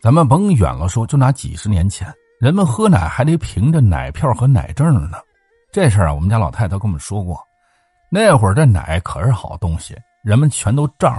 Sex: male